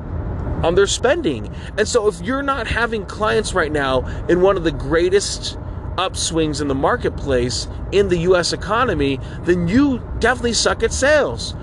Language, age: English, 30-49